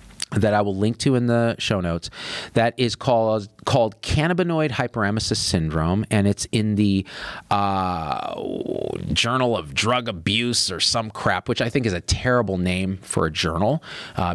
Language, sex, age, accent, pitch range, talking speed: English, male, 40-59, American, 95-130 Hz, 165 wpm